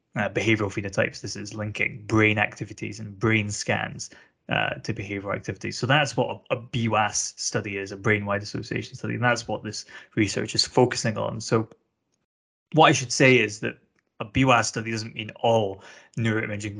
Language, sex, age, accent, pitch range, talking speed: English, male, 20-39, British, 105-120 Hz, 175 wpm